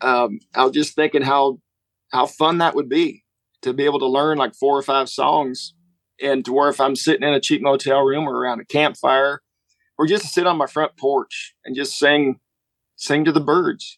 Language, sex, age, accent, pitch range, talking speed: English, male, 40-59, American, 135-160 Hz, 215 wpm